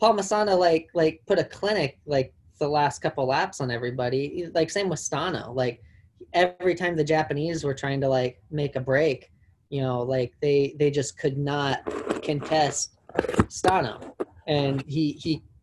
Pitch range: 125-155 Hz